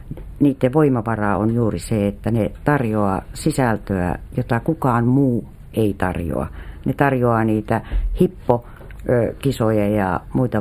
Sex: female